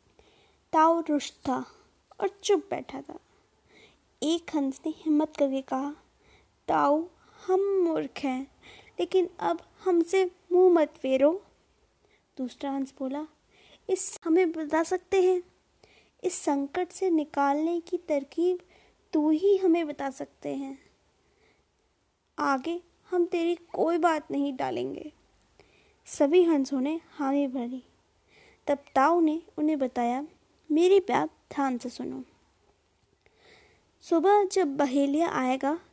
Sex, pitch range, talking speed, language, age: female, 275-350 Hz, 115 wpm, Hindi, 20-39